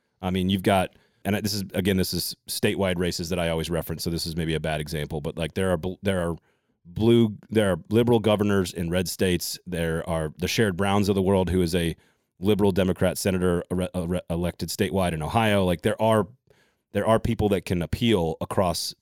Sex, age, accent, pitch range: male, 30-49, American, 90-110 Hz